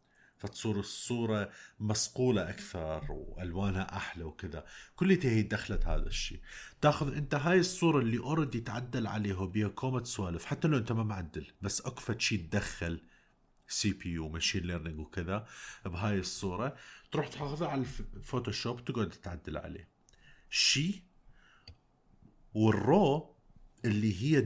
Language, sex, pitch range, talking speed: Arabic, male, 95-130 Hz, 125 wpm